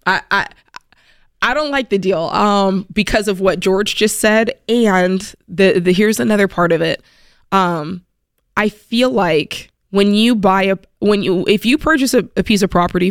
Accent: American